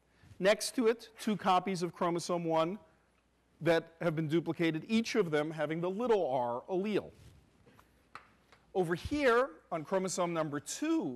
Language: English